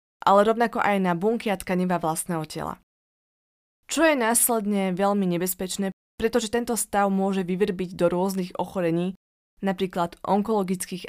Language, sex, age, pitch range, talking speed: Slovak, female, 20-39, 175-210 Hz, 130 wpm